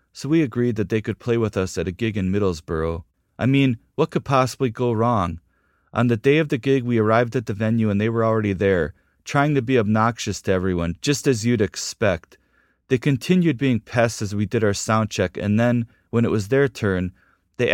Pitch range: 105-135 Hz